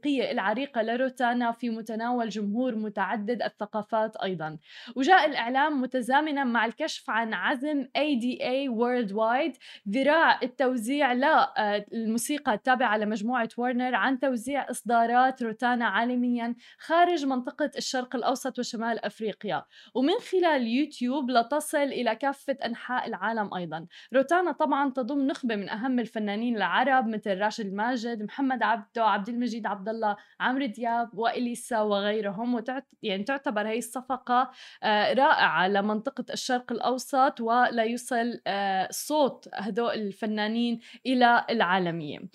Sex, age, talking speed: female, 20-39, 110 wpm